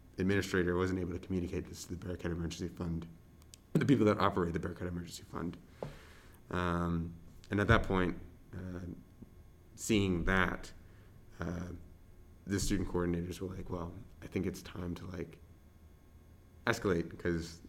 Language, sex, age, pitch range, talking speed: English, male, 30-49, 85-95 Hz, 145 wpm